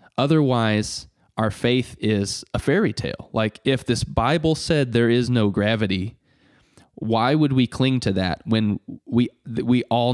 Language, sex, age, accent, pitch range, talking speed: English, male, 20-39, American, 100-120 Hz, 155 wpm